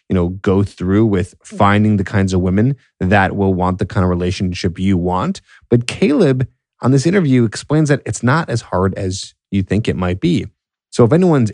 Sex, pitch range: male, 95-115 Hz